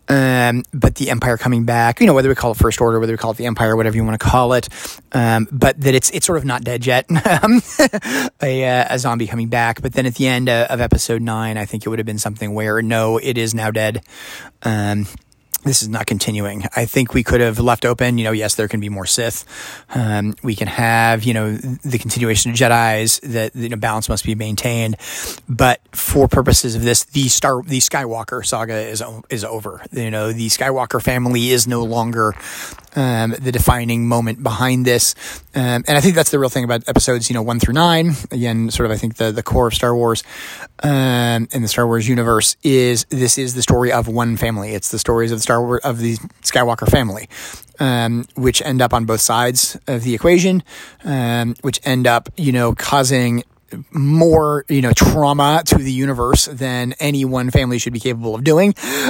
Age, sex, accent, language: 30-49, male, American, English